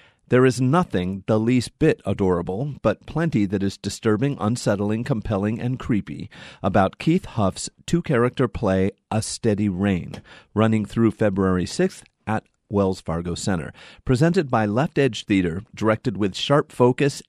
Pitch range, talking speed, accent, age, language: 100-140 Hz, 140 wpm, American, 40-59, English